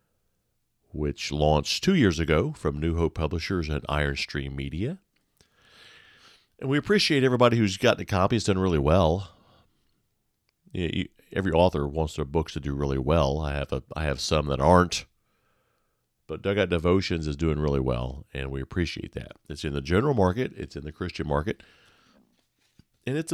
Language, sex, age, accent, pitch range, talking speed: English, male, 50-69, American, 75-110 Hz, 175 wpm